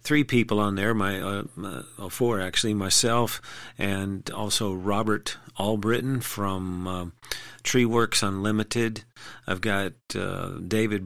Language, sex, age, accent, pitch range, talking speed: English, male, 40-59, American, 95-115 Hz, 115 wpm